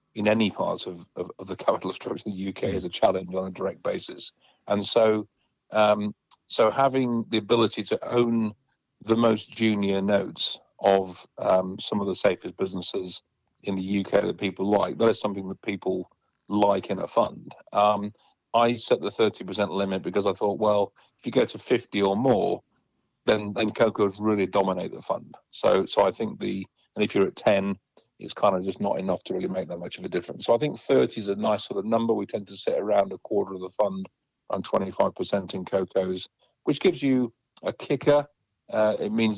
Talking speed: 205 wpm